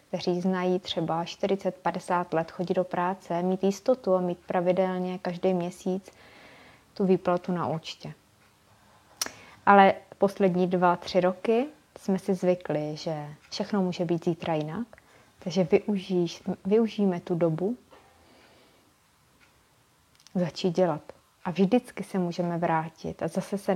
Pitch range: 170-195 Hz